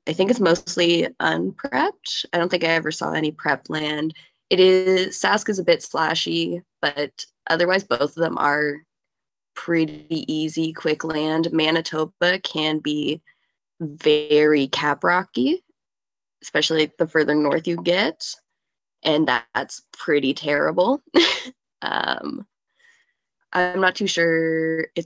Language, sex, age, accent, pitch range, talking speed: English, female, 20-39, American, 160-210 Hz, 125 wpm